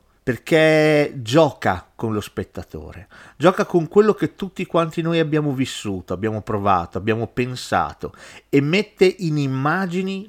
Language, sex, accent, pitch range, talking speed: Italian, male, native, 105-160 Hz, 130 wpm